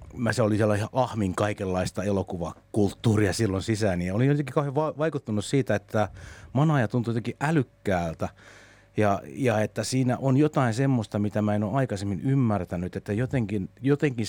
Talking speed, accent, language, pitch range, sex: 155 wpm, native, Finnish, 105-130 Hz, male